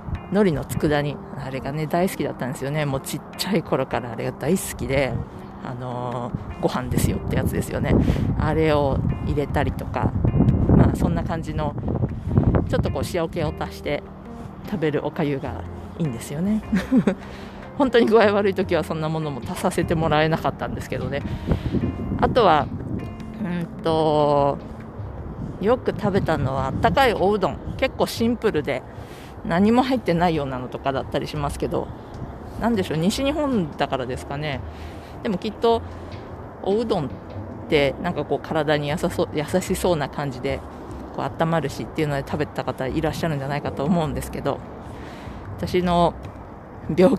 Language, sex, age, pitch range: Japanese, female, 50-69, 135-180 Hz